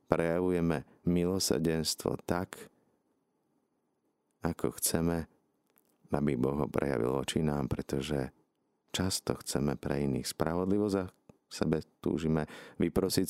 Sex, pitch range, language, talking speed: male, 70-85 Hz, Slovak, 95 wpm